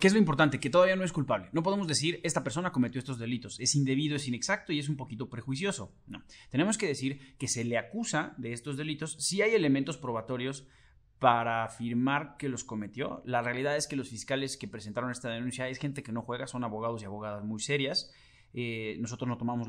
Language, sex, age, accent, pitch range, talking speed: Spanish, male, 30-49, Mexican, 115-150 Hz, 220 wpm